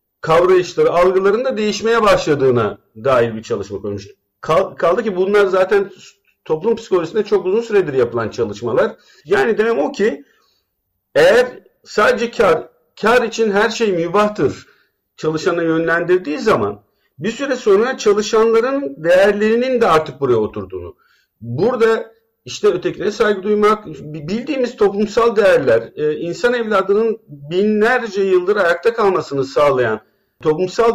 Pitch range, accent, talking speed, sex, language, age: 150-245 Hz, native, 115 wpm, male, Turkish, 50-69